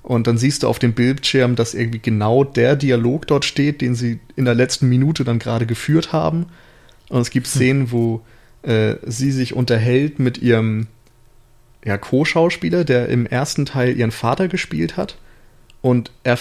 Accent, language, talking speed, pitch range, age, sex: German, German, 170 wpm, 115-130 Hz, 30-49, male